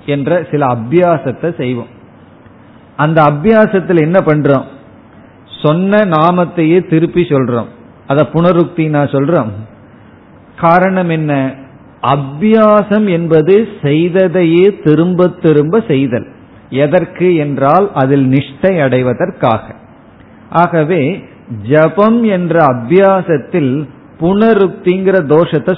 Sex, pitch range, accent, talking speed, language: male, 135-180 Hz, native, 35 wpm, Tamil